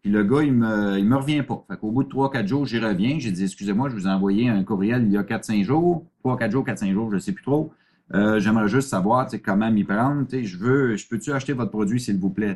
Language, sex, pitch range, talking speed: French, male, 100-135 Hz, 290 wpm